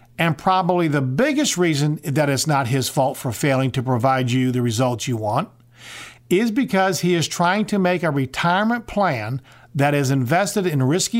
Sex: male